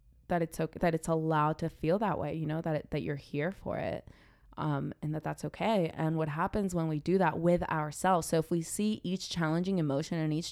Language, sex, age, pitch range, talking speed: English, female, 20-39, 155-175 Hz, 235 wpm